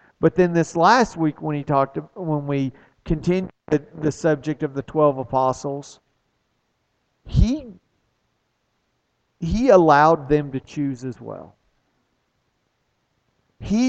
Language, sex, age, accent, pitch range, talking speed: English, male, 50-69, American, 135-165 Hz, 115 wpm